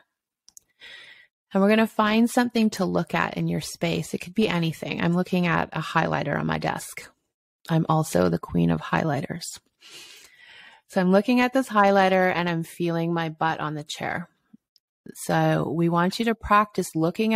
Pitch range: 165-220 Hz